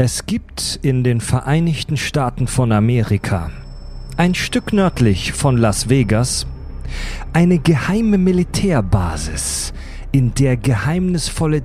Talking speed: 105 wpm